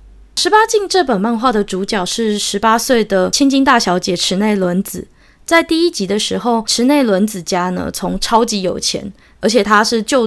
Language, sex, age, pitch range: Chinese, female, 20-39, 195-240 Hz